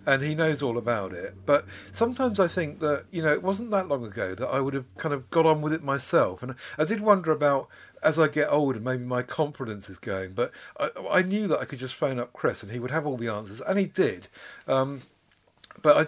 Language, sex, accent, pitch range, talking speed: English, male, British, 115-150 Hz, 250 wpm